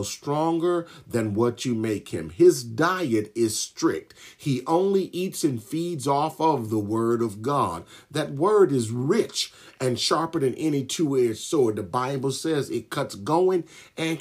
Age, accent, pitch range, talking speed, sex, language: 40-59, American, 115-175 Hz, 160 wpm, male, English